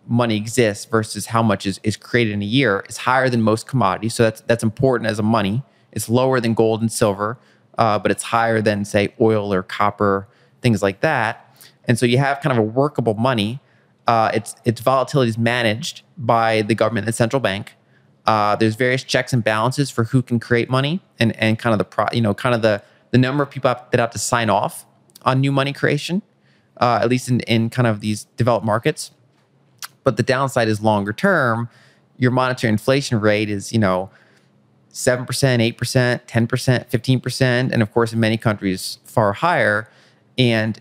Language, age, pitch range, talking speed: English, 30-49, 110-130 Hz, 205 wpm